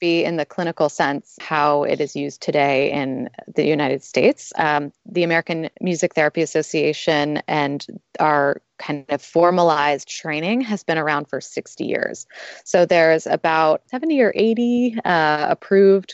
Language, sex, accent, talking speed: English, female, American, 145 wpm